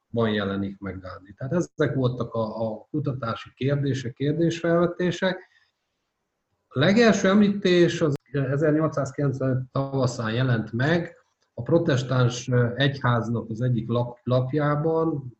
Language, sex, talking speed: Hungarian, male, 105 wpm